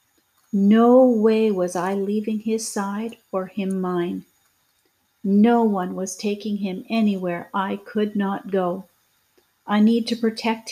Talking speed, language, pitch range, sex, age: 135 wpm, English, 205-245 Hz, female, 50-69